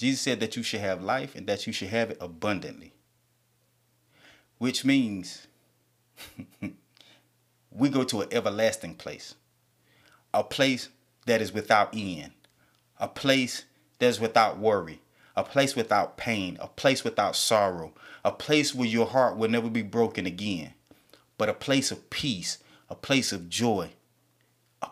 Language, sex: English, male